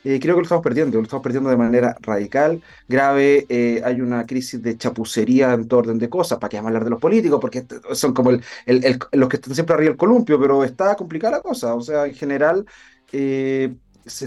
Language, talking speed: Spanish, 235 wpm